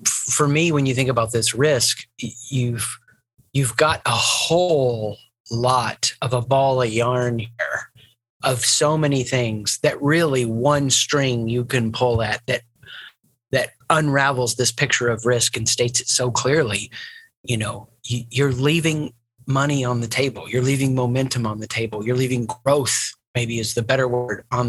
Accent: American